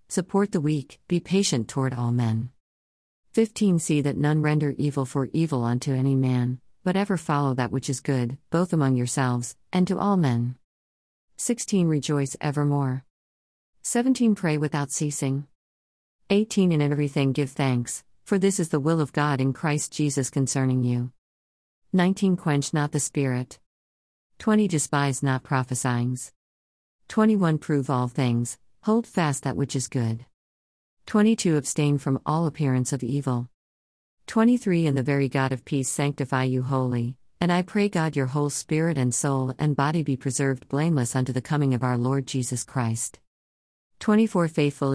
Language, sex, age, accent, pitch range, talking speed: English, female, 50-69, American, 125-155 Hz, 145 wpm